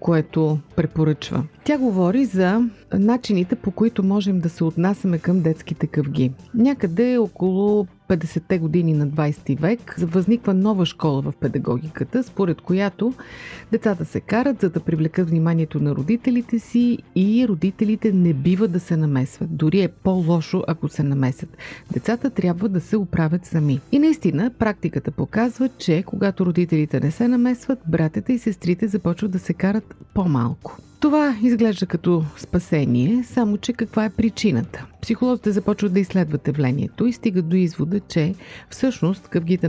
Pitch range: 155-215 Hz